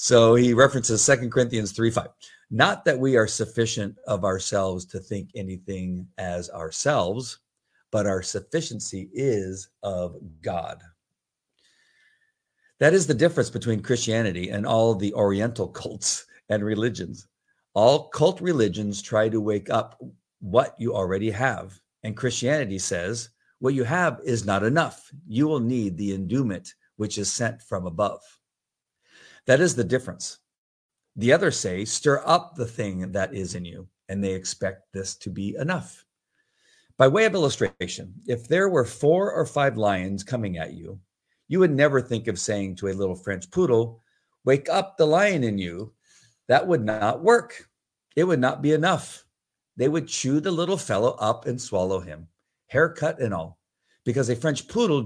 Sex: male